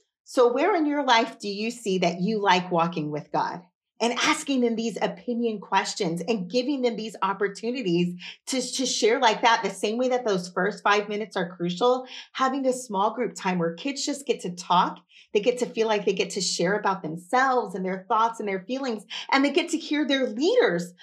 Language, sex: English, female